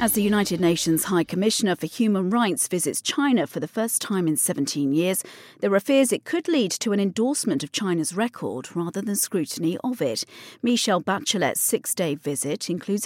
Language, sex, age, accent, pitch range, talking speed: English, female, 40-59, British, 165-230 Hz, 185 wpm